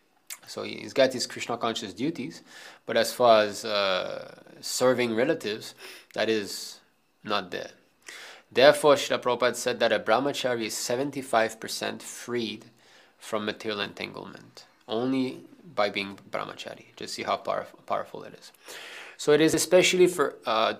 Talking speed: 135 wpm